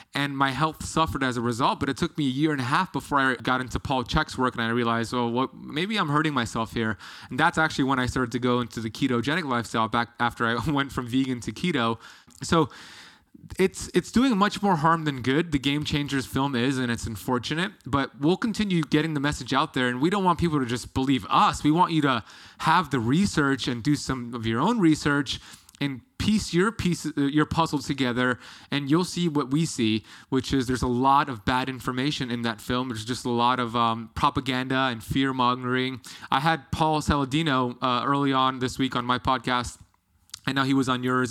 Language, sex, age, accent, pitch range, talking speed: English, male, 20-39, American, 125-150 Hz, 220 wpm